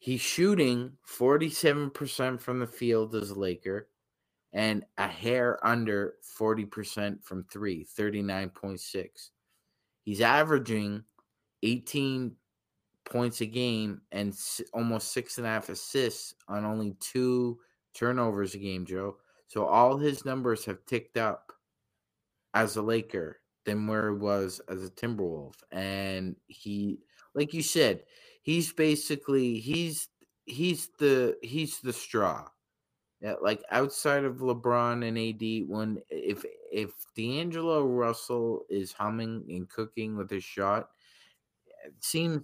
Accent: American